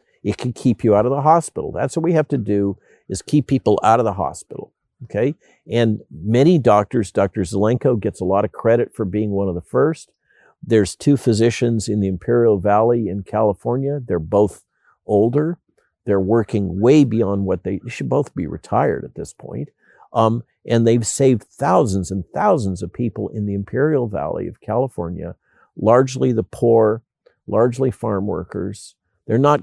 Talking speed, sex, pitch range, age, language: 175 wpm, male, 100-120 Hz, 50-69, English